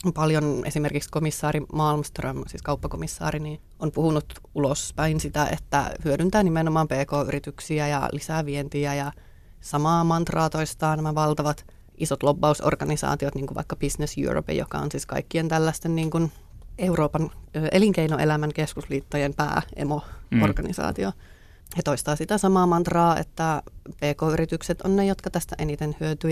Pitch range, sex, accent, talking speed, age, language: 145-160 Hz, female, native, 130 wpm, 30-49, Finnish